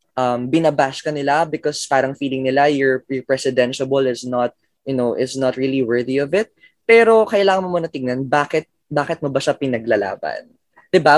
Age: 20-39